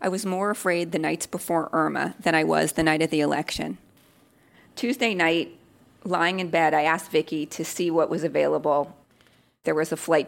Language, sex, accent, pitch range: English, female, American, 155-190 Hz